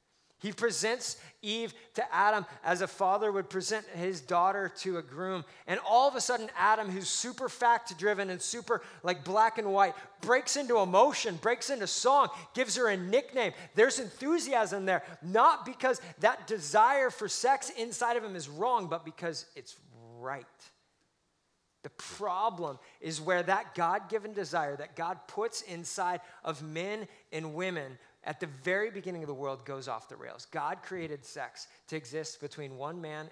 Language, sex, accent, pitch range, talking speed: English, male, American, 145-210 Hz, 165 wpm